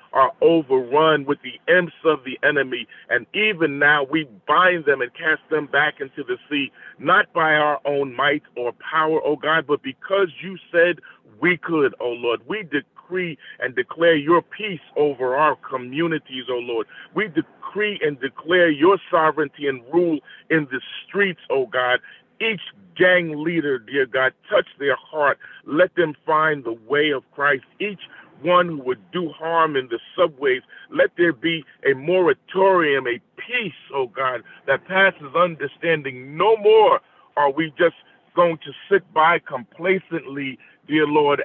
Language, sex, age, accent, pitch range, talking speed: English, male, 40-59, American, 145-185 Hz, 160 wpm